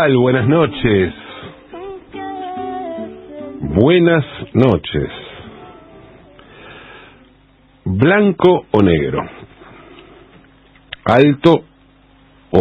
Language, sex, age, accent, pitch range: English, male, 50-69, Argentinian, 105-145 Hz